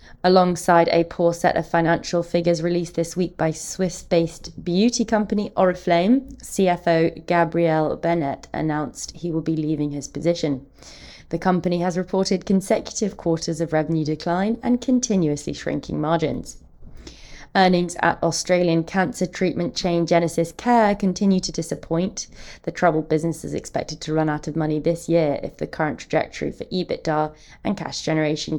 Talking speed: 145 wpm